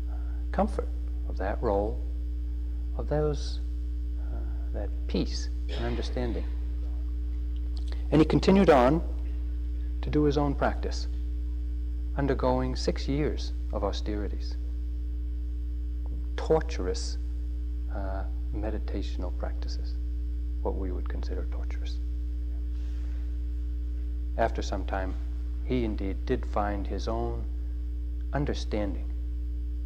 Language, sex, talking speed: English, male, 90 wpm